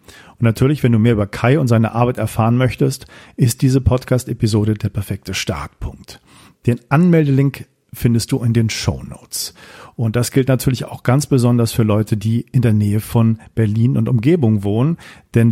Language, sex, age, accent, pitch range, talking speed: English, male, 40-59, German, 110-135 Hz, 170 wpm